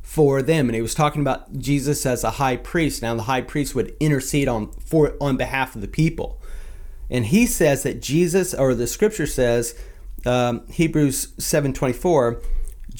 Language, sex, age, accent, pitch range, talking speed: English, male, 30-49, American, 115-160 Hz, 170 wpm